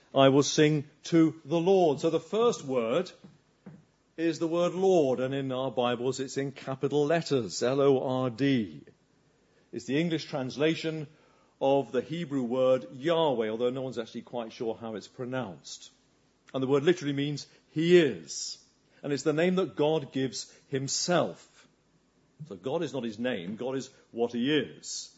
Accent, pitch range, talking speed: British, 135-170 Hz, 160 wpm